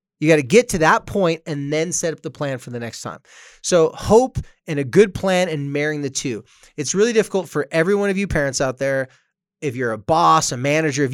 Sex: male